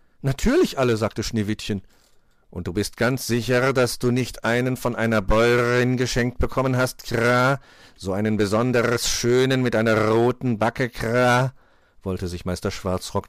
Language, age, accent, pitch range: German, 50-69, German, 90-120 Hz